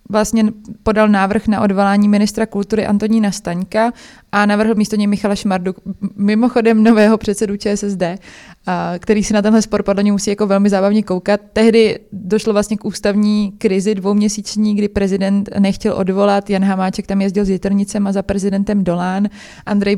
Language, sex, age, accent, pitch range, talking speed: Czech, female, 20-39, native, 195-215 Hz, 155 wpm